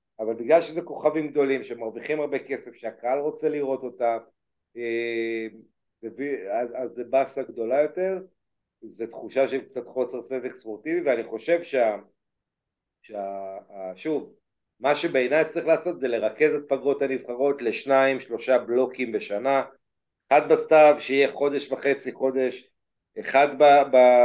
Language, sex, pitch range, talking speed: Hebrew, male, 125-175 Hz, 130 wpm